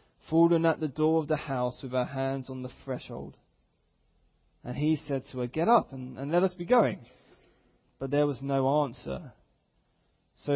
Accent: British